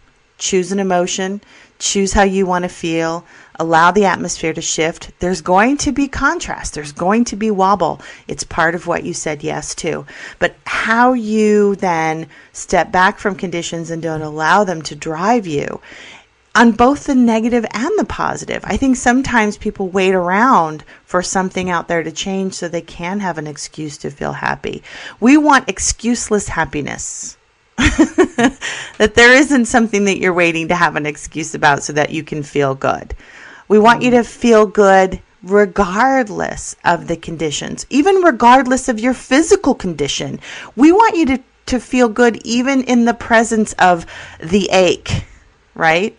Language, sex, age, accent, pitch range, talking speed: English, female, 40-59, American, 165-235 Hz, 165 wpm